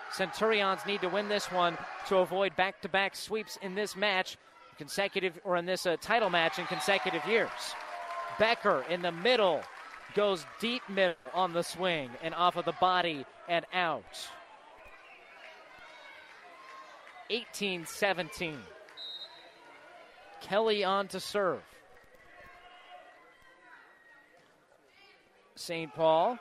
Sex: male